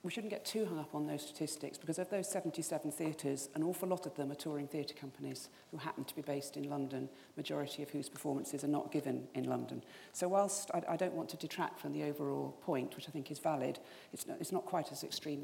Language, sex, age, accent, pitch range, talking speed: English, female, 40-59, British, 150-185 Hz, 240 wpm